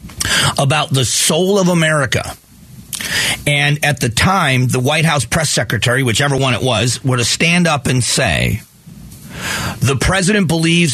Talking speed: 150 wpm